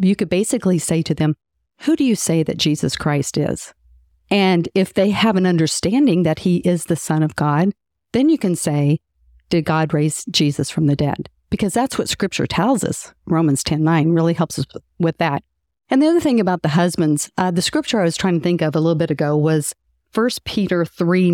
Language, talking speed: English, 215 wpm